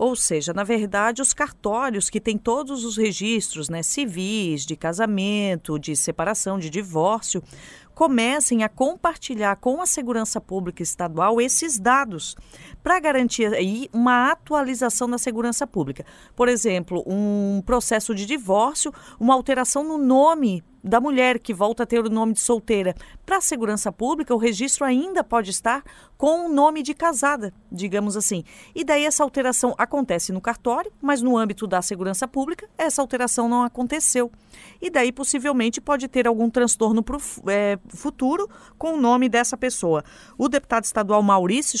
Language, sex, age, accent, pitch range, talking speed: Portuguese, female, 40-59, Brazilian, 200-265 Hz, 150 wpm